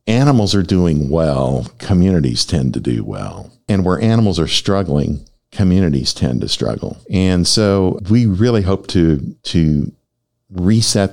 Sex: male